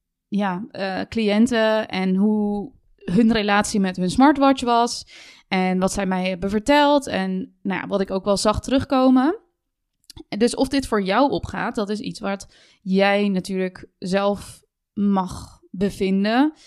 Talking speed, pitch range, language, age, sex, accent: 140 wpm, 185-220 Hz, Dutch, 20-39, female, Dutch